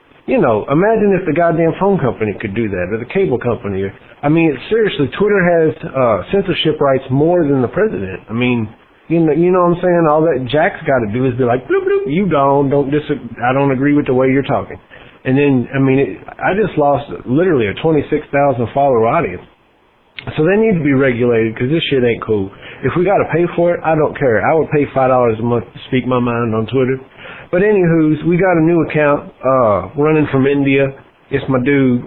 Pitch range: 130-165 Hz